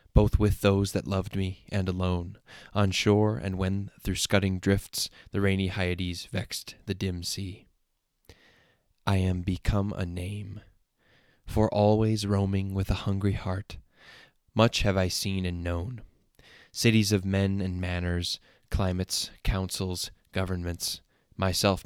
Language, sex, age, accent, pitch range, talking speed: English, male, 10-29, American, 90-105 Hz, 135 wpm